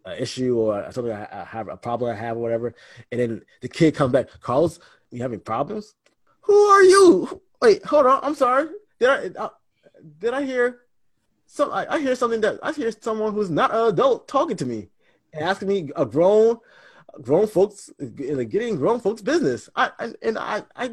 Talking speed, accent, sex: 200 wpm, American, male